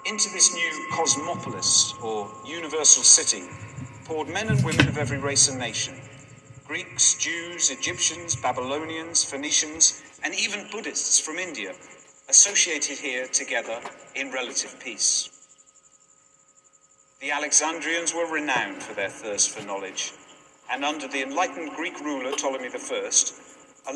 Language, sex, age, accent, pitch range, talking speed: English, male, 50-69, British, 140-180 Hz, 125 wpm